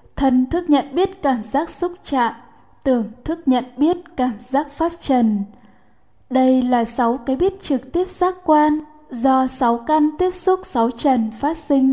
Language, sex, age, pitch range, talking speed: Vietnamese, female, 10-29, 245-295 Hz, 170 wpm